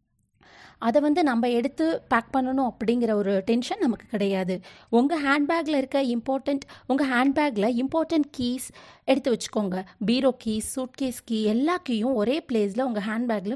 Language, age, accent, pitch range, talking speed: Tamil, 30-49, native, 215-290 Hz, 140 wpm